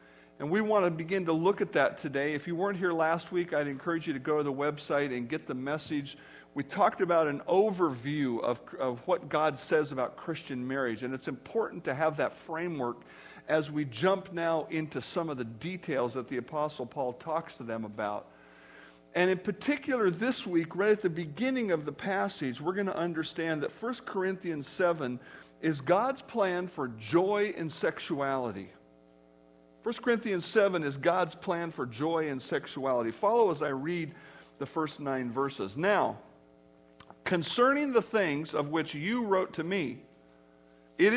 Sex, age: male, 50-69